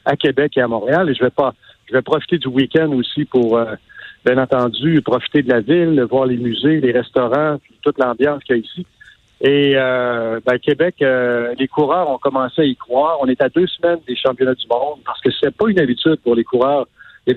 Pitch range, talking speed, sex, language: 125-155 Hz, 230 wpm, male, French